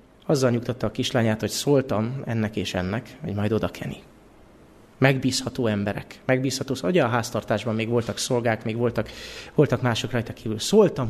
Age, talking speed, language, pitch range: 30-49, 155 wpm, Hungarian, 105-130 Hz